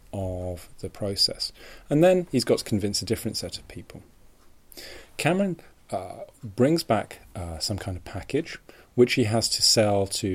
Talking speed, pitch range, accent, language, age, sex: 170 wpm, 95-115 Hz, British, English, 30-49, male